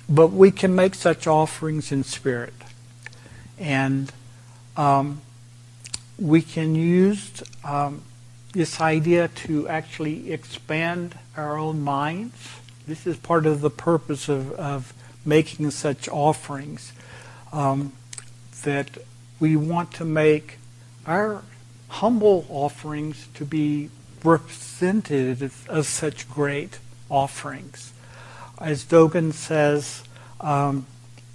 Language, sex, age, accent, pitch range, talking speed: English, male, 60-79, American, 125-160 Hz, 100 wpm